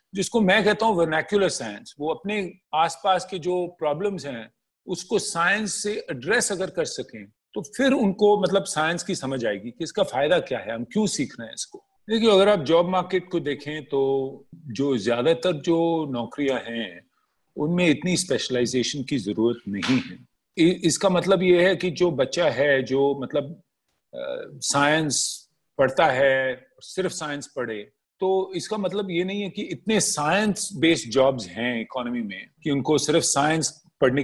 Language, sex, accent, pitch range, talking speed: Hindi, male, native, 140-200 Hz, 165 wpm